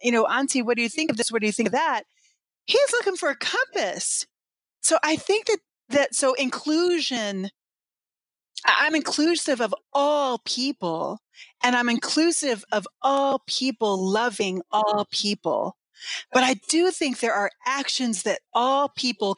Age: 40-59